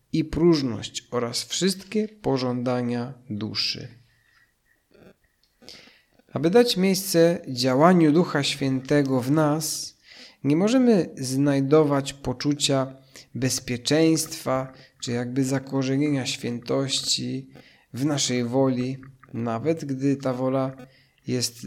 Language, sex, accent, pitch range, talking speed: Polish, male, native, 125-155 Hz, 85 wpm